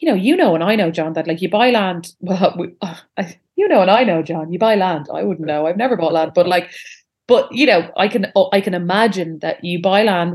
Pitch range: 170-205 Hz